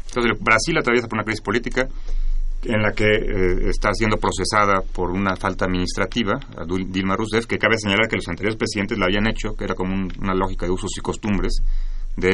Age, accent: 30-49, Mexican